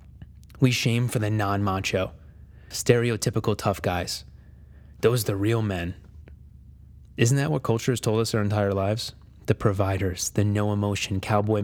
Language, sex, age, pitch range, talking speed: English, male, 30-49, 100-125 Hz, 150 wpm